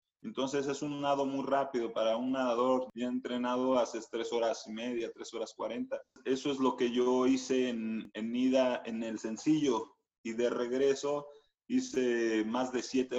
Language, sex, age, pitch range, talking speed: Spanish, male, 30-49, 115-130 Hz, 175 wpm